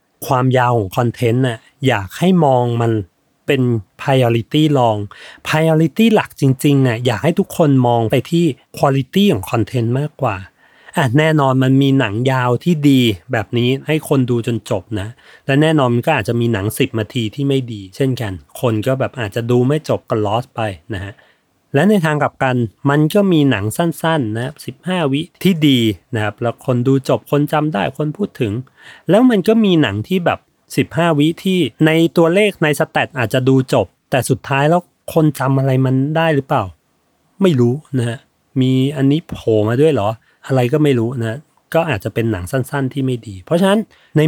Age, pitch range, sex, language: 30-49, 115-155 Hz, male, Thai